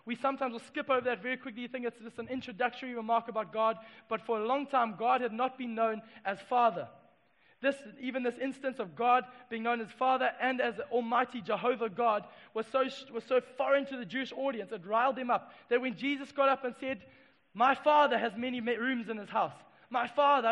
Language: English